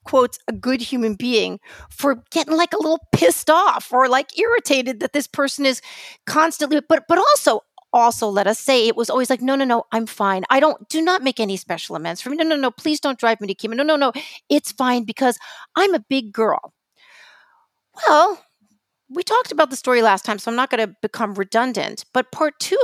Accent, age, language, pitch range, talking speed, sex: American, 40-59, English, 210-275 Hz, 220 wpm, female